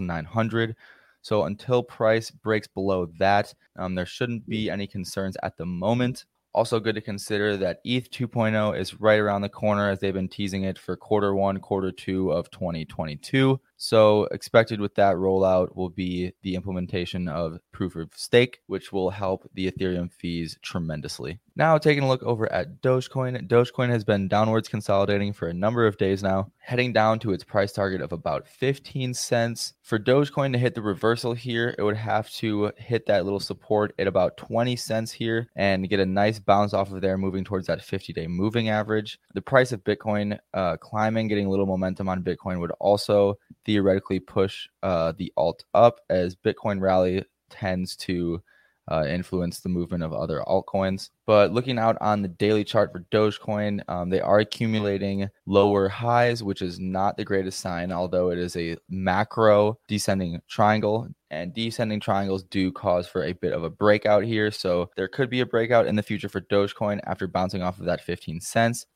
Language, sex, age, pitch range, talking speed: English, male, 20-39, 95-110 Hz, 185 wpm